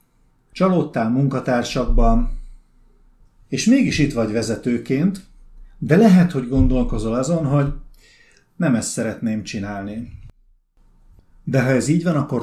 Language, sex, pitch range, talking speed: Hungarian, male, 115-150 Hz, 110 wpm